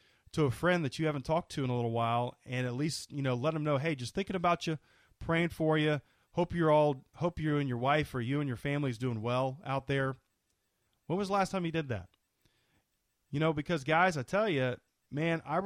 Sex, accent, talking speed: male, American, 240 wpm